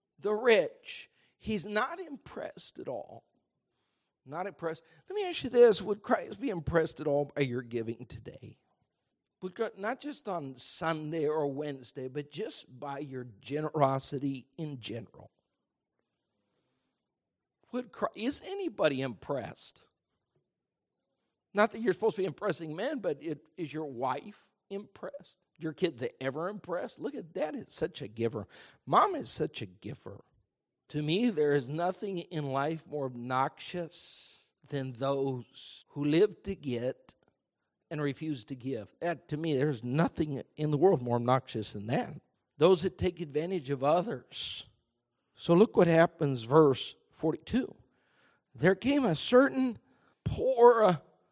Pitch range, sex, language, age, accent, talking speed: 135-200 Hz, male, English, 50-69, American, 140 wpm